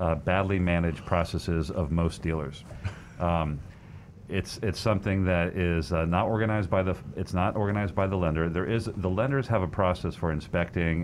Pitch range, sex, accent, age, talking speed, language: 80-95 Hz, male, American, 40-59, 180 wpm, English